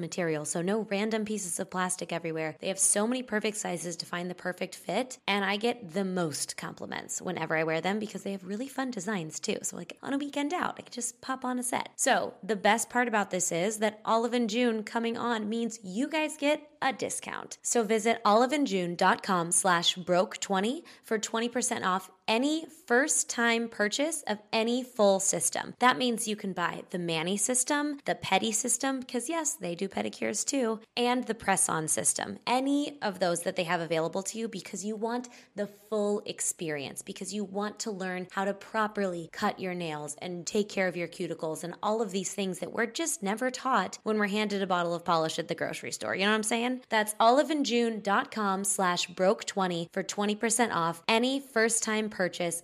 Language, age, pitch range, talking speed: English, 20-39, 180-235 Hz, 195 wpm